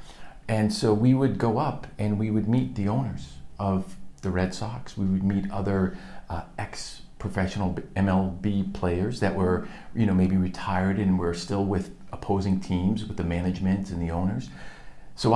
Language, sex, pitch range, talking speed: English, male, 95-115 Hz, 170 wpm